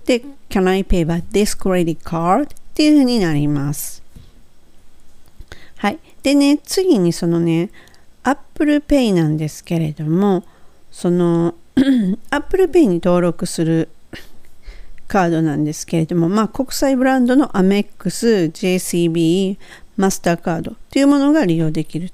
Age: 50-69